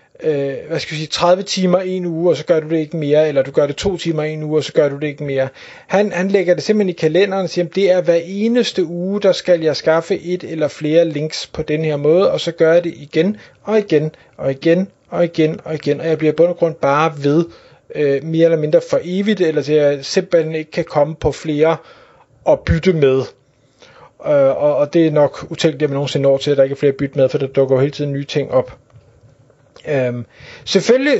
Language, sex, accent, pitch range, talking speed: Danish, male, native, 150-180 Hz, 245 wpm